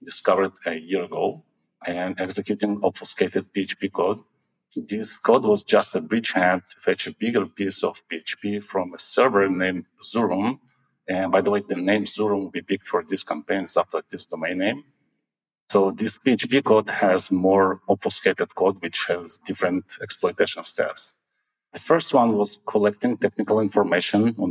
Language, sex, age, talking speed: English, male, 50-69, 160 wpm